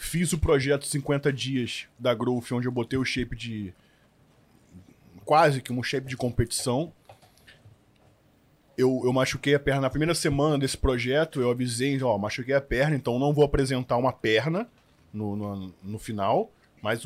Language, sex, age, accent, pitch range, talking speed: Portuguese, male, 20-39, Brazilian, 110-135 Hz, 160 wpm